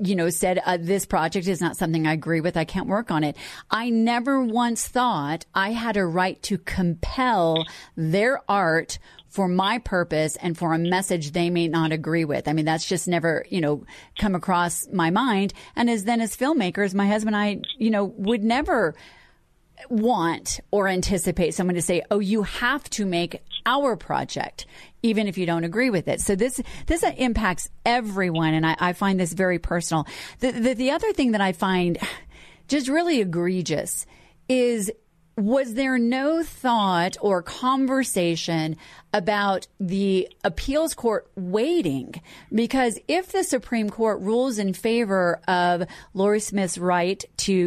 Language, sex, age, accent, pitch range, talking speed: English, female, 40-59, American, 175-230 Hz, 165 wpm